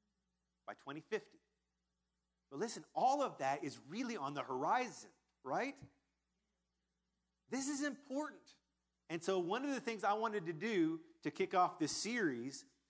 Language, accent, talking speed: English, American, 145 wpm